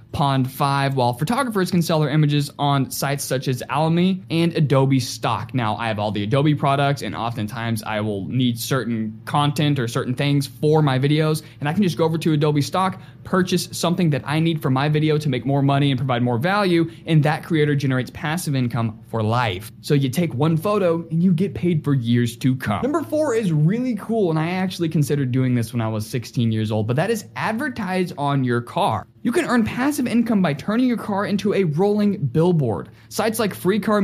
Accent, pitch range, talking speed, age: American, 135-185 Hz, 215 wpm, 20-39